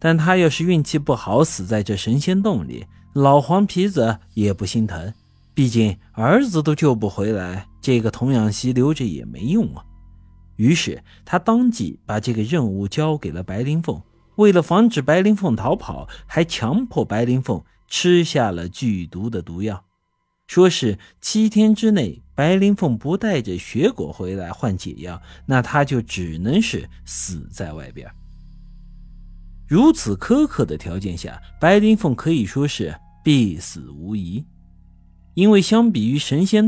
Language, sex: Chinese, male